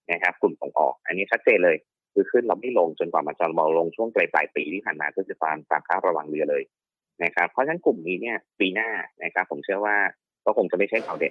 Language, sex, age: Thai, male, 30-49